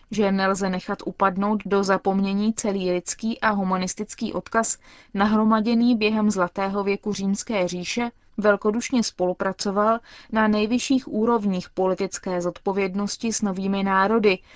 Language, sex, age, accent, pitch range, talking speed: Czech, female, 20-39, native, 195-230 Hz, 110 wpm